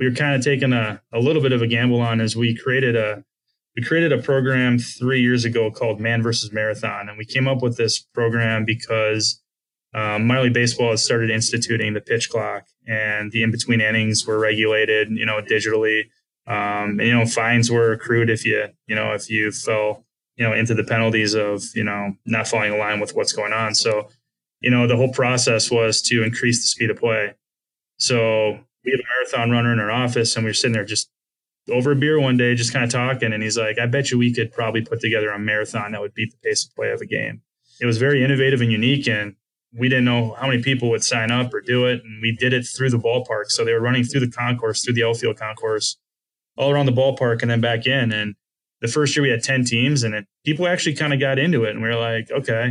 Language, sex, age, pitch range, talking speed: English, male, 20-39, 110-125 Hz, 240 wpm